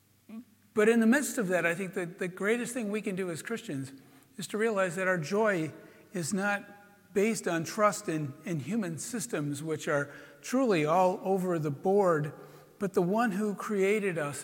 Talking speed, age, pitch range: 185 wpm, 60-79, 160-215 Hz